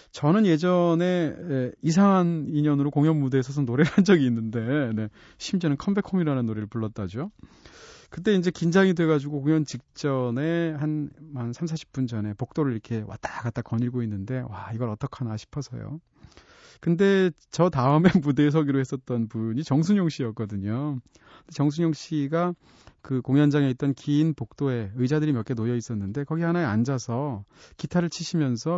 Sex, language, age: male, Korean, 30-49